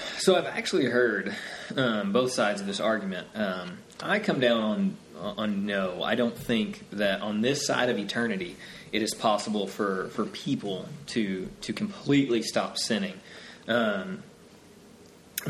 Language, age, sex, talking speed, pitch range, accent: English, 20-39, male, 145 wpm, 105-140 Hz, American